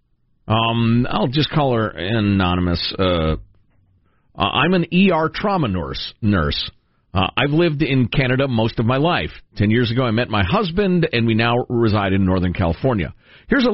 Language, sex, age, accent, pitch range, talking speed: English, male, 50-69, American, 105-170 Hz, 165 wpm